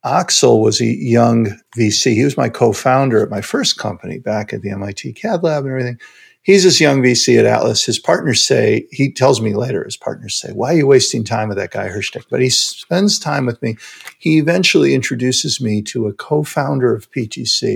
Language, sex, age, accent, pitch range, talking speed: English, male, 50-69, American, 110-140 Hz, 205 wpm